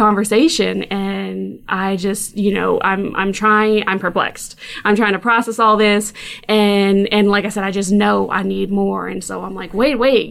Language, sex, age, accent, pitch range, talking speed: English, female, 20-39, American, 195-220 Hz, 200 wpm